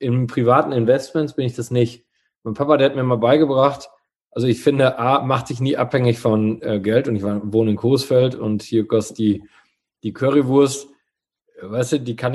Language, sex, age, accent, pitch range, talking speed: German, male, 20-39, German, 115-140 Hz, 200 wpm